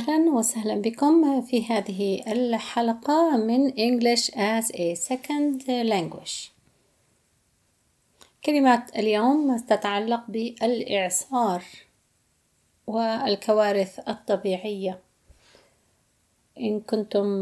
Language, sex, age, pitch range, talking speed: Arabic, female, 30-49, 205-245 Hz, 70 wpm